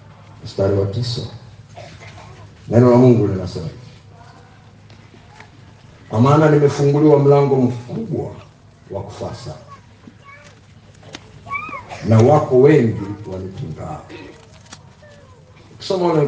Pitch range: 115-140 Hz